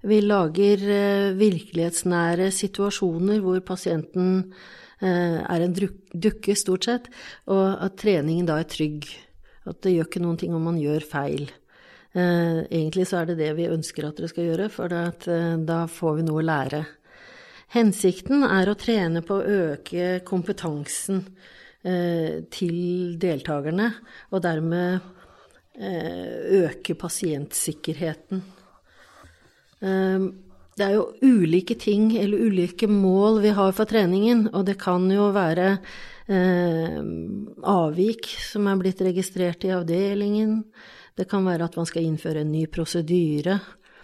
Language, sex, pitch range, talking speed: English, female, 170-200 Hz, 140 wpm